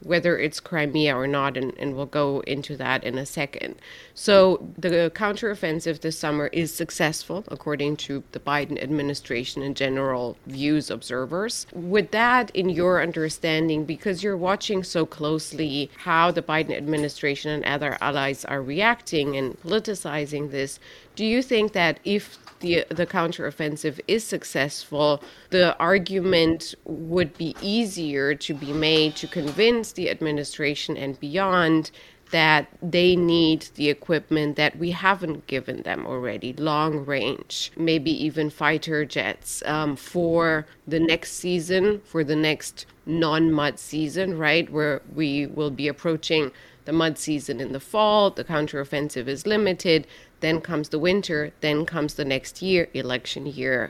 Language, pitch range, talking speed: English, 145-175 Hz, 145 wpm